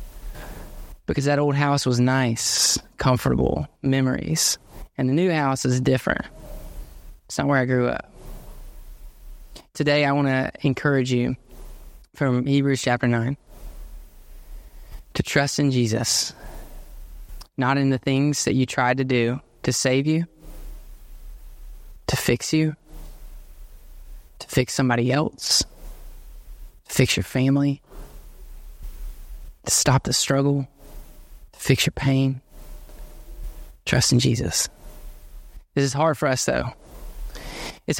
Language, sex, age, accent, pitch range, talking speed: English, male, 20-39, American, 100-145 Hz, 115 wpm